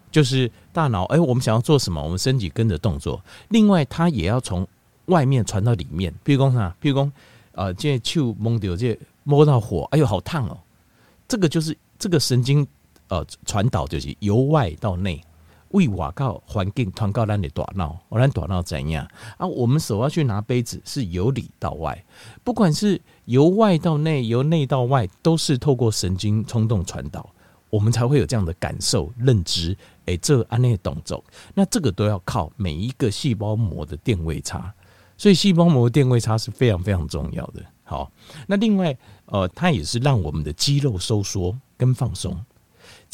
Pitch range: 95-145 Hz